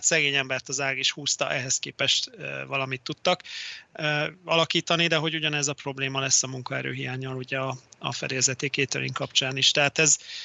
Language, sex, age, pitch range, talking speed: Hungarian, male, 30-49, 135-155 Hz, 165 wpm